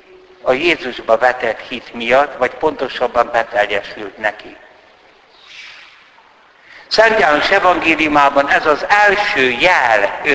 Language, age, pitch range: Hungarian, 60-79, 130-205 Hz